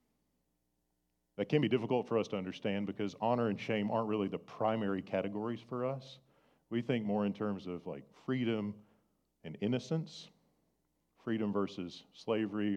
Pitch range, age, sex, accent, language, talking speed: 105-160 Hz, 40-59, male, American, English, 150 wpm